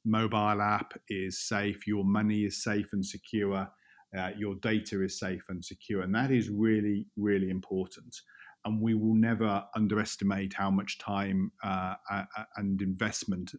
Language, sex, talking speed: English, male, 155 wpm